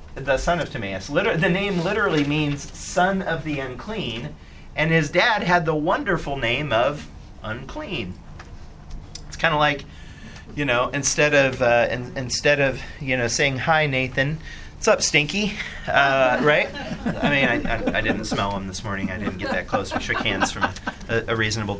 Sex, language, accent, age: male, English, American, 30-49